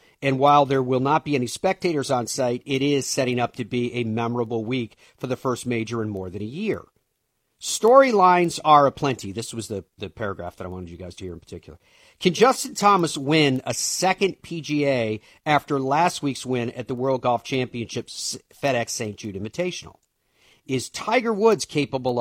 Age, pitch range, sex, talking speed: 50-69, 115-150 Hz, male, 185 wpm